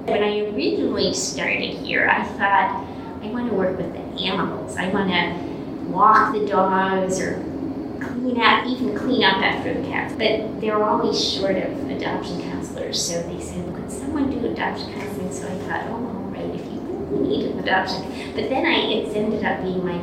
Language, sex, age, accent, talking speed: English, female, 30-49, American, 185 wpm